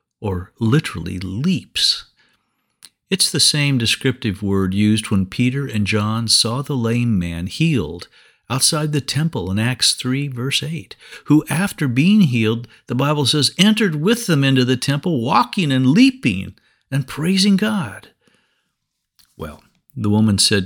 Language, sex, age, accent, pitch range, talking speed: English, male, 50-69, American, 110-165 Hz, 140 wpm